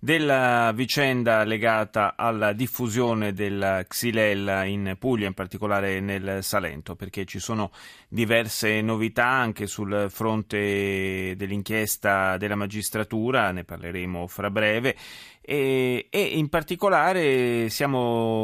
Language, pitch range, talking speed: Italian, 105-125 Hz, 105 wpm